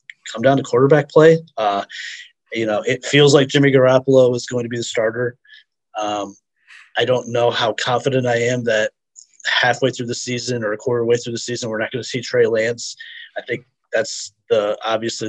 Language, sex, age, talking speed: English, male, 30-49, 200 wpm